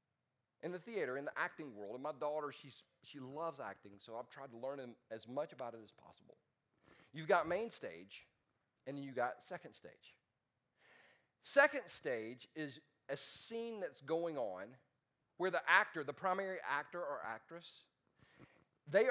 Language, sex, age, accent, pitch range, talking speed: English, male, 40-59, American, 125-170 Hz, 160 wpm